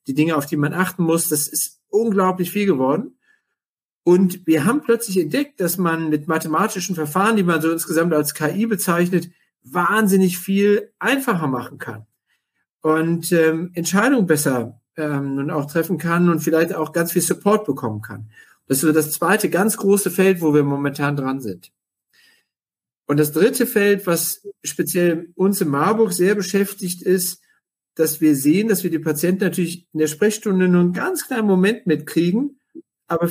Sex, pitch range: male, 150-195 Hz